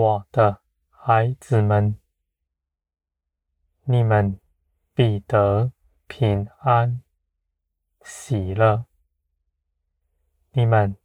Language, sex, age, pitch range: Chinese, male, 20-39, 70-110 Hz